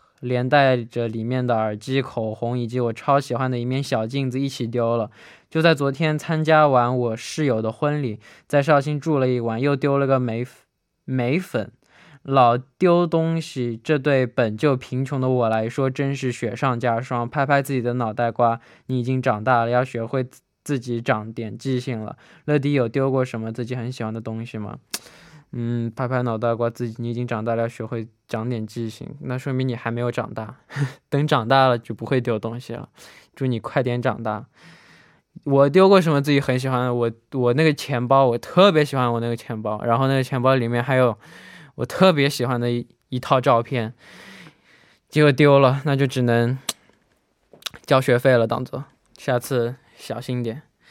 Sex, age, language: male, 10-29, Korean